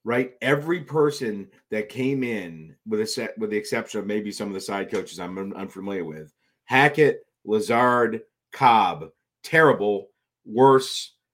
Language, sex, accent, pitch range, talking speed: English, male, American, 110-145 Hz, 150 wpm